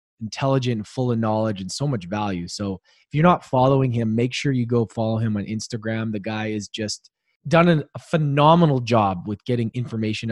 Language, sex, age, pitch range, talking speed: English, male, 20-39, 110-140 Hz, 200 wpm